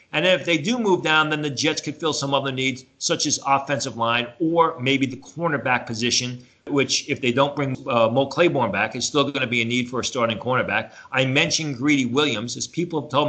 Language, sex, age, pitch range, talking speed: English, male, 40-59, 120-145 Hz, 225 wpm